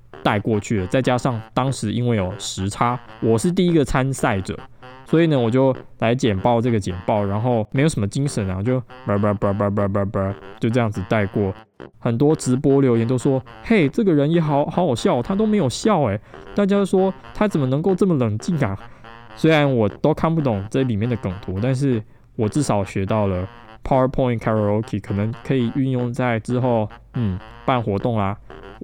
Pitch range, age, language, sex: 105-135 Hz, 20-39, Chinese, male